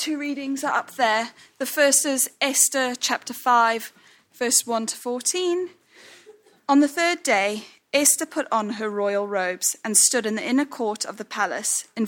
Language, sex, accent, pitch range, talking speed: English, female, British, 220-310 Hz, 175 wpm